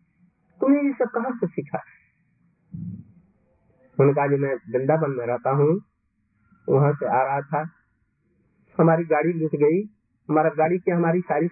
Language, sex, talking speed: Hindi, male, 110 wpm